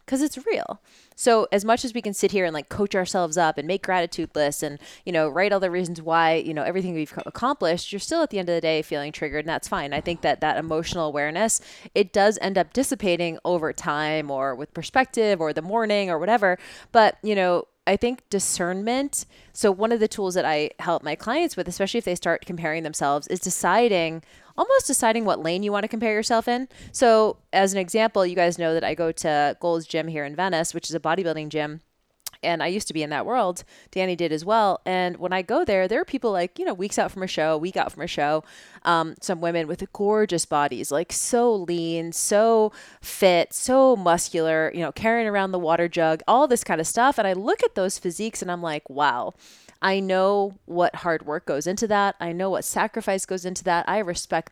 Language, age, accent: English, 20-39, American